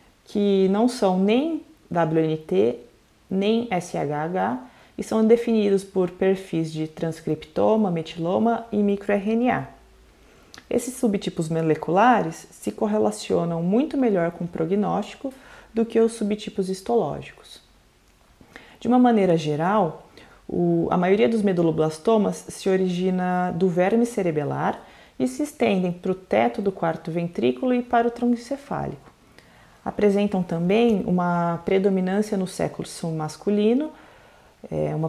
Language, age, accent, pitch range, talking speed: Portuguese, 30-49, Brazilian, 170-215 Hz, 115 wpm